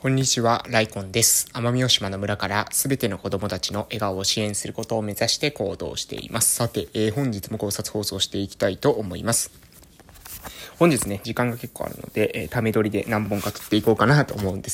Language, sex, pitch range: Japanese, male, 100-120 Hz